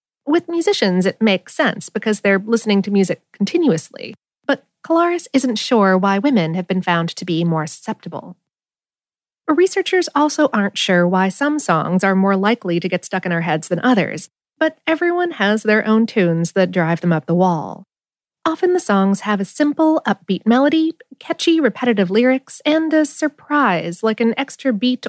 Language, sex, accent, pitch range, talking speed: English, female, American, 185-290 Hz, 170 wpm